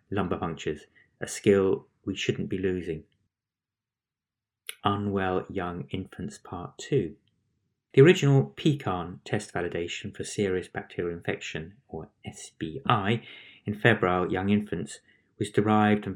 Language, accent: English, British